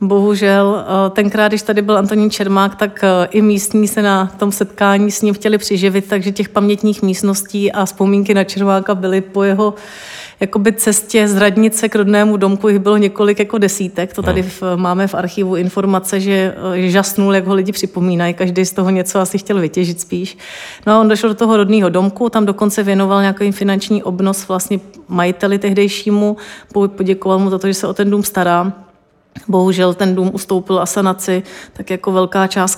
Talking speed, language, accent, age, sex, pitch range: 180 wpm, Czech, native, 30-49, female, 185-205 Hz